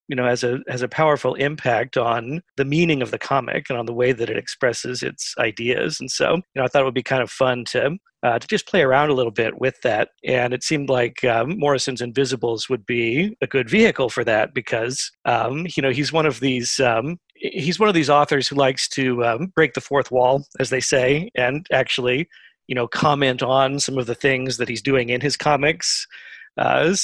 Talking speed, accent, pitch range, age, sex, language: 225 wpm, American, 125-150 Hz, 40-59, male, English